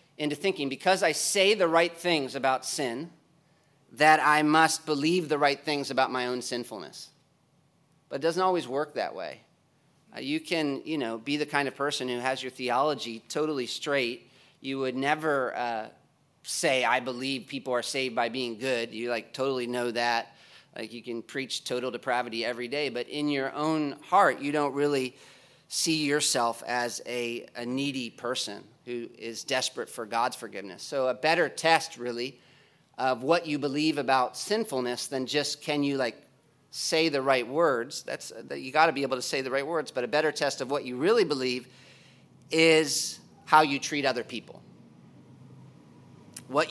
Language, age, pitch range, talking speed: English, 40-59, 125-155 Hz, 180 wpm